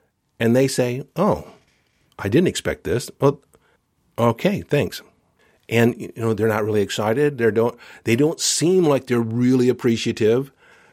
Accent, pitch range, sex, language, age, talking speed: American, 120-165 Hz, male, English, 50-69, 145 wpm